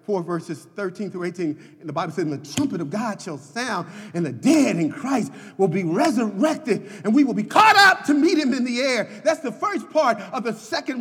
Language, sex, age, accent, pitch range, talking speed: English, male, 40-59, American, 200-320 Hz, 230 wpm